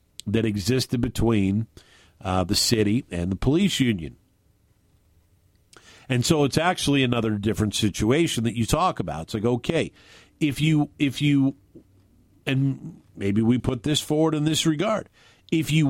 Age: 50-69